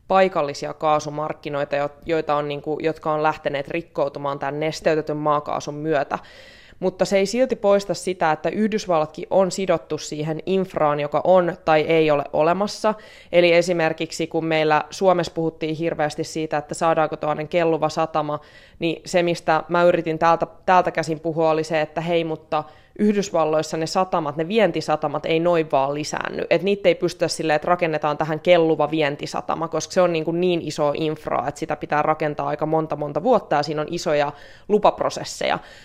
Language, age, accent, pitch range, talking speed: Finnish, 20-39, native, 155-180 Hz, 165 wpm